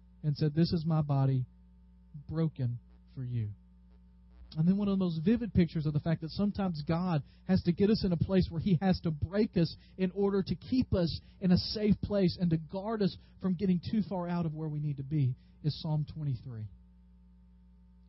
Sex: male